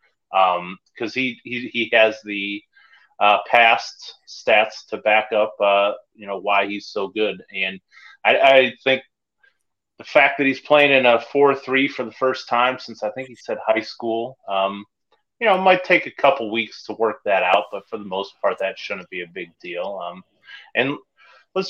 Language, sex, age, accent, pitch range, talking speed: English, male, 30-49, American, 100-130 Hz, 200 wpm